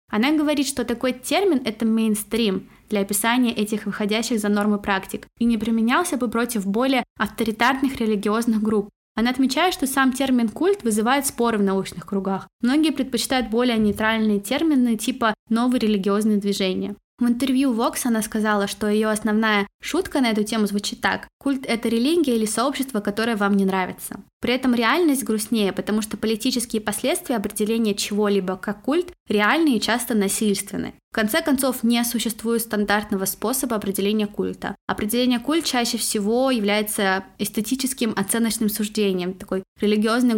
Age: 20-39